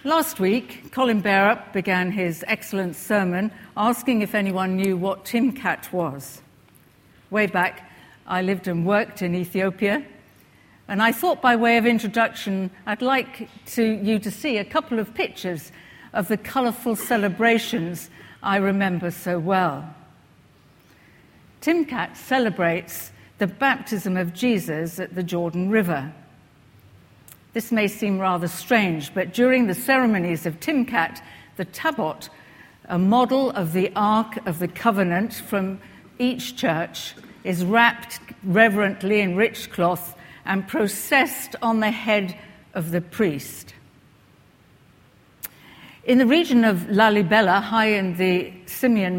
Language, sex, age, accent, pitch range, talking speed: English, female, 60-79, British, 180-230 Hz, 130 wpm